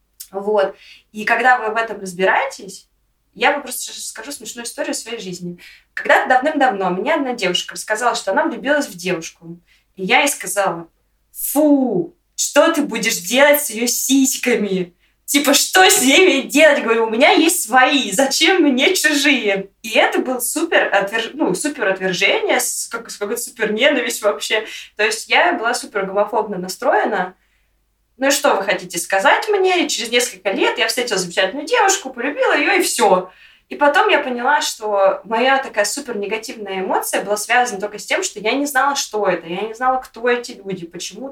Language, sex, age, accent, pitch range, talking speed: Russian, female, 20-39, native, 200-285 Hz, 170 wpm